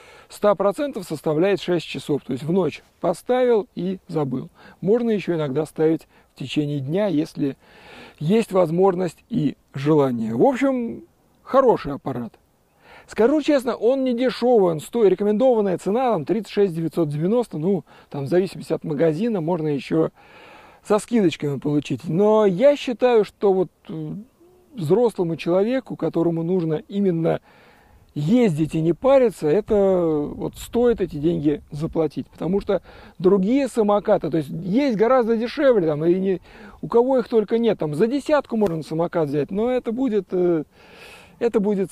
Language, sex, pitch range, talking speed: Russian, male, 160-225 Hz, 140 wpm